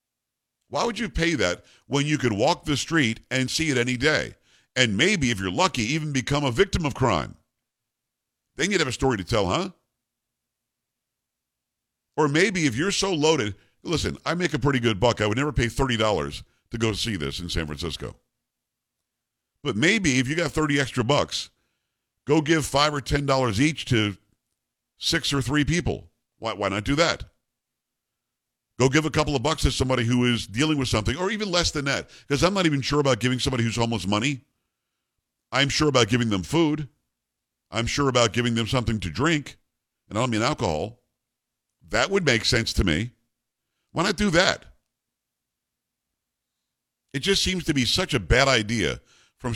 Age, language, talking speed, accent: 50-69, English, 185 wpm, American